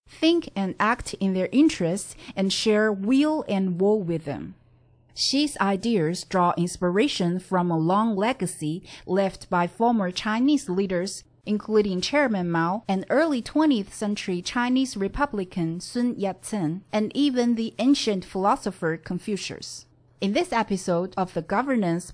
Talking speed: 135 wpm